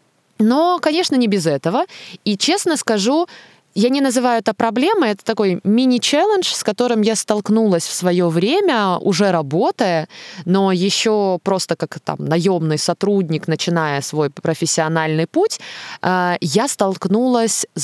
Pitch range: 170-220 Hz